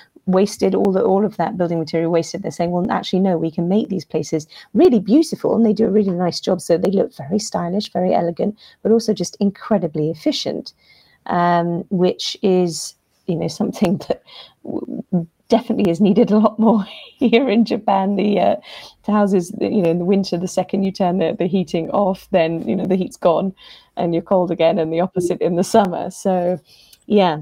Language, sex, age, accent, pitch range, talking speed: English, female, 30-49, British, 165-200 Hz, 200 wpm